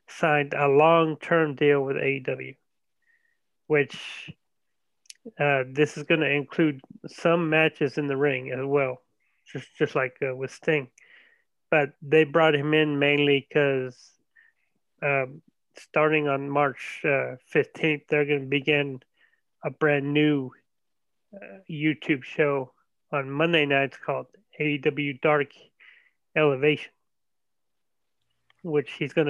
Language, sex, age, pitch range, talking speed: English, male, 30-49, 140-155 Hz, 120 wpm